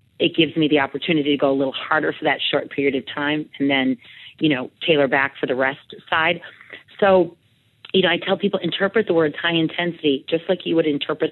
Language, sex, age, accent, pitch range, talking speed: English, female, 40-59, American, 145-185 Hz, 225 wpm